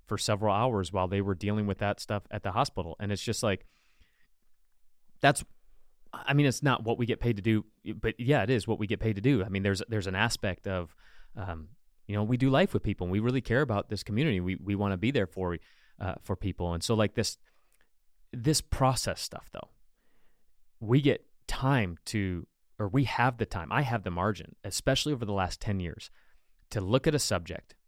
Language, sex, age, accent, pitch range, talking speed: English, male, 30-49, American, 100-130 Hz, 220 wpm